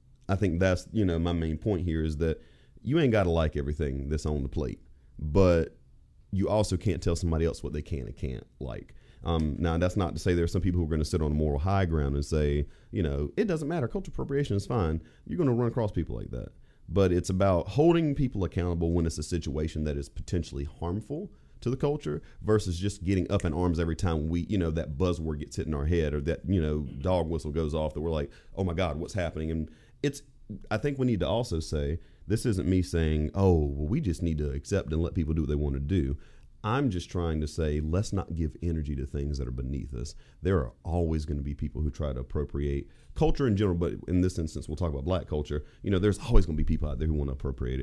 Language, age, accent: English, 30-49, American